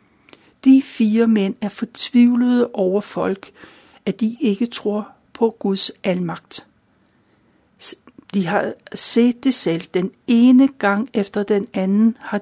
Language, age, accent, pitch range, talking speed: Danish, 60-79, native, 195-240 Hz, 125 wpm